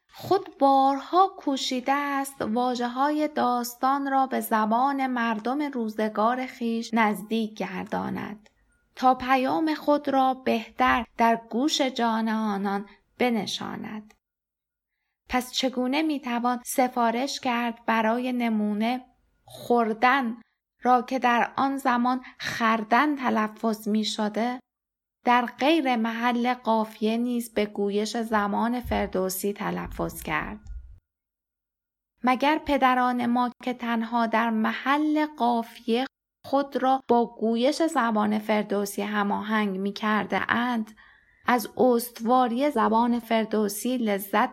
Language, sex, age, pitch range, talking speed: Persian, female, 20-39, 220-260 Hz, 100 wpm